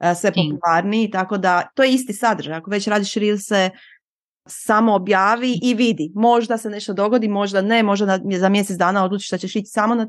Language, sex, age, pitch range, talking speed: Croatian, female, 30-49, 190-235 Hz, 195 wpm